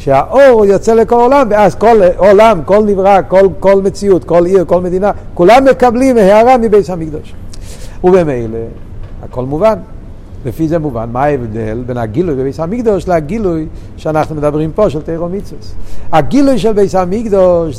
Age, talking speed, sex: 60-79, 145 wpm, male